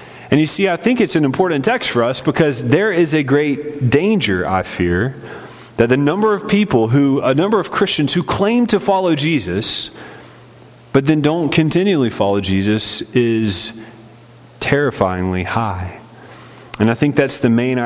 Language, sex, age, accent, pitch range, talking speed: English, male, 30-49, American, 115-155 Hz, 160 wpm